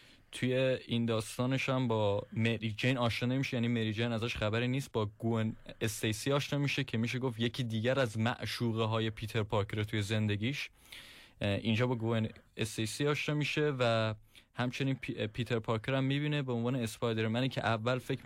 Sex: male